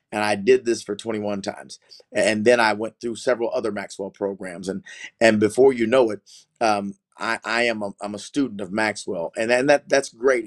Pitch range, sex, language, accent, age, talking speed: 105-120 Hz, male, English, American, 30-49, 210 wpm